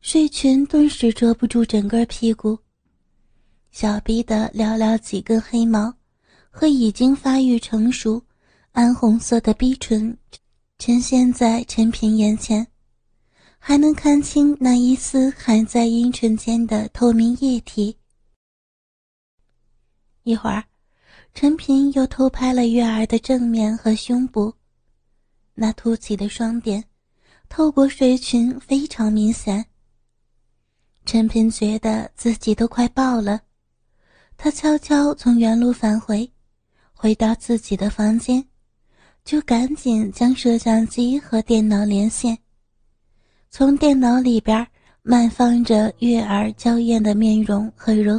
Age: 30-49